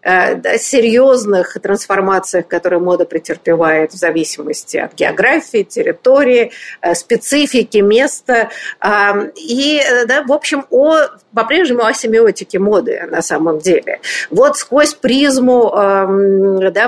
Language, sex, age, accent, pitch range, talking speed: Russian, female, 50-69, native, 195-295 Hz, 100 wpm